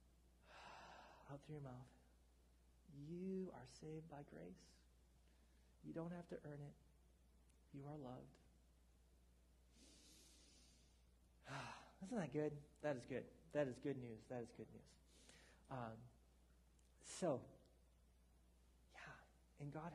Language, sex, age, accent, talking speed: English, male, 30-49, American, 110 wpm